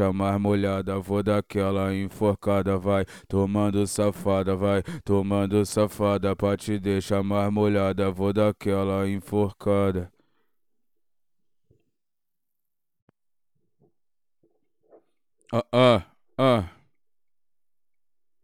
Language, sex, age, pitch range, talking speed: English, male, 20-39, 100-120 Hz, 60 wpm